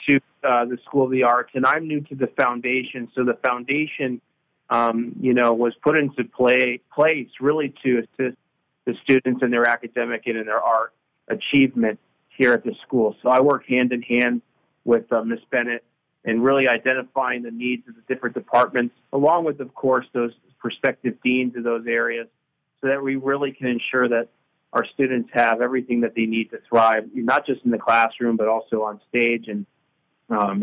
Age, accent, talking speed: 40-59, American, 190 wpm